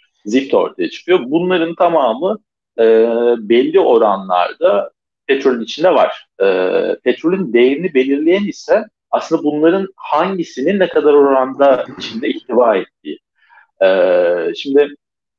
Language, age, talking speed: Turkish, 50-69, 105 wpm